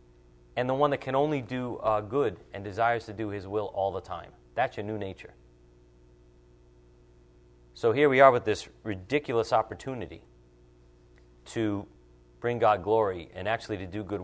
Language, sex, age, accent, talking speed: English, male, 40-59, American, 165 wpm